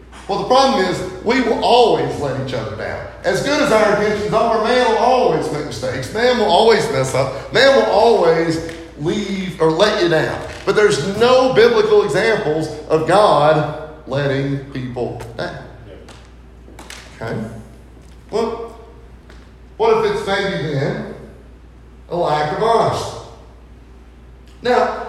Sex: male